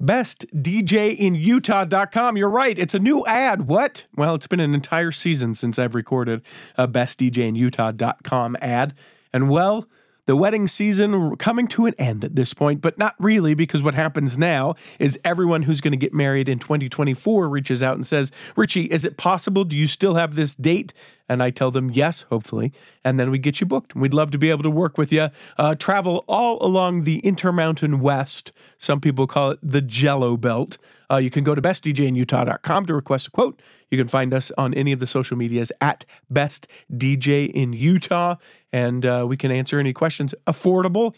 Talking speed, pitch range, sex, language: 185 wpm, 130-180 Hz, male, English